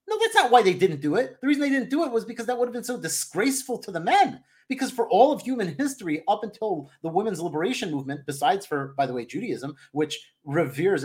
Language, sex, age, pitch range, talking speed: English, male, 30-49, 145-235 Hz, 245 wpm